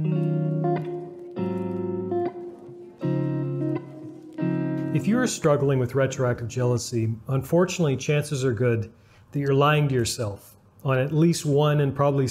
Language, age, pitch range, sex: English, 40-59, 120-155 Hz, male